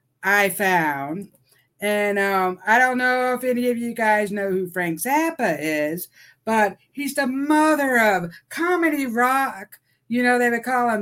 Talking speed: 165 wpm